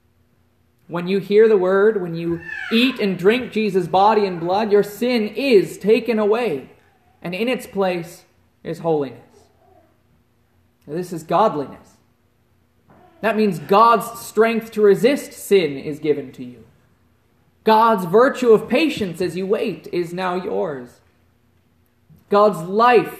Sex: male